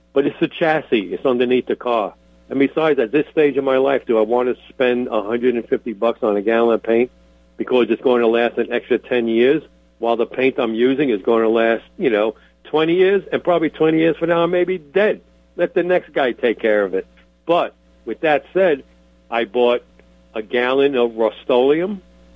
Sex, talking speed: male, 205 wpm